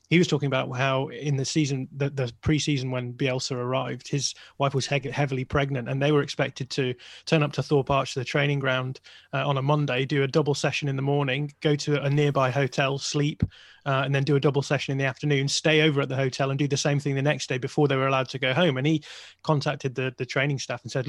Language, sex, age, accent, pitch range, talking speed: English, male, 20-39, British, 130-145 Hz, 250 wpm